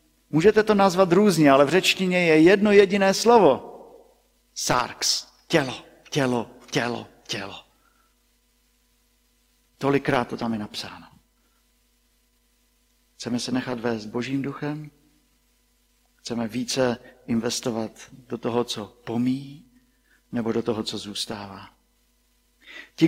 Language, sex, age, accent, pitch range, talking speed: Czech, male, 50-69, native, 120-170 Hz, 105 wpm